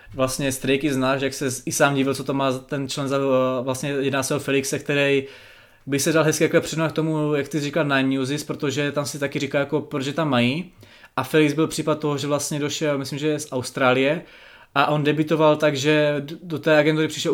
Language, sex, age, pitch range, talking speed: Czech, male, 20-39, 140-155 Hz, 220 wpm